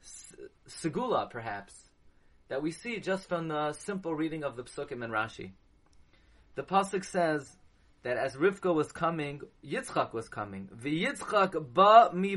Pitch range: 110-165 Hz